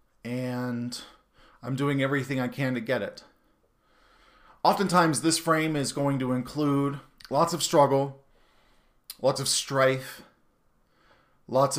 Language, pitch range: English, 130-170 Hz